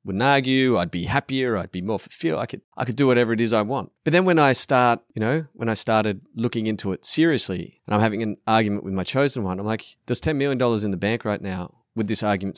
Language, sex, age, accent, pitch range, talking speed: English, male, 30-49, Australian, 95-120 Hz, 265 wpm